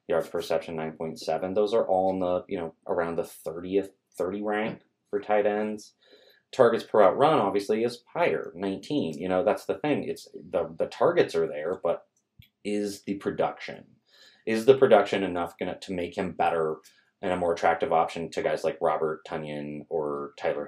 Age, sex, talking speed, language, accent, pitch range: 30-49, male, 185 wpm, English, American, 80-110 Hz